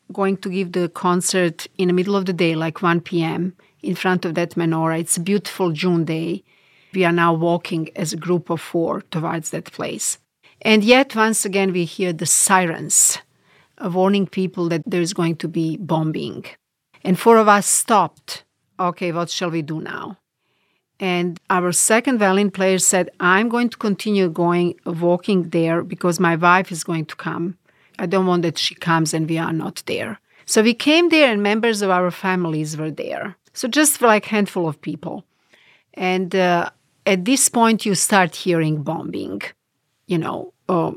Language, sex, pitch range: English, female, 170-205 Hz